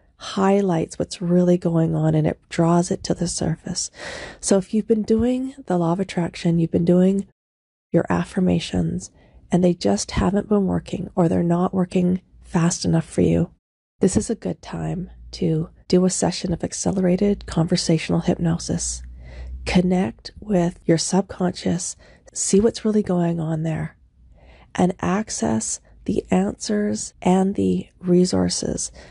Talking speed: 145 wpm